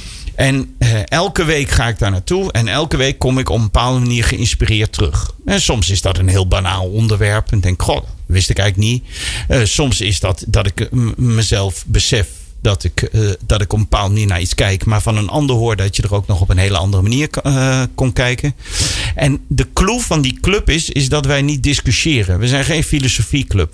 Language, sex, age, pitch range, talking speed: Dutch, male, 40-59, 100-140 Hz, 225 wpm